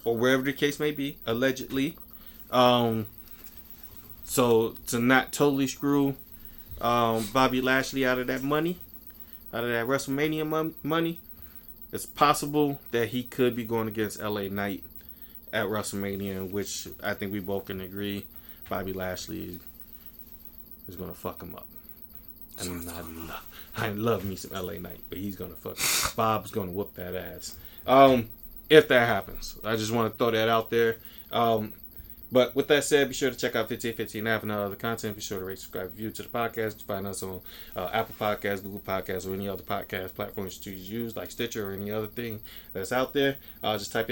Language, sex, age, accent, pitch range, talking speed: English, male, 20-39, American, 100-130 Hz, 185 wpm